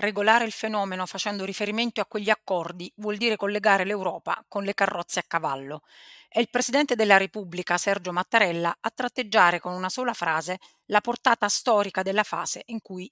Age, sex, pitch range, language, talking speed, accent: 30-49, female, 185-225 Hz, Italian, 170 wpm, native